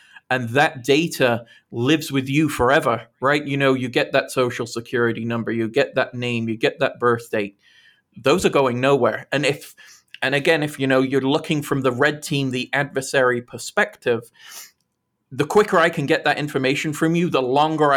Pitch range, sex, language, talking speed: 120-145 Hz, male, English, 185 wpm